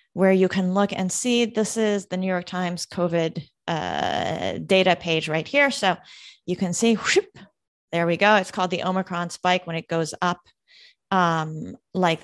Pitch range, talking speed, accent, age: 175-210 Hz, 180 wpm, American, 30-49